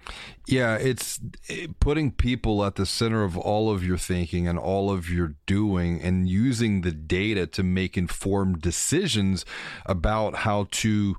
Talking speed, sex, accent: 150 wpm, male, American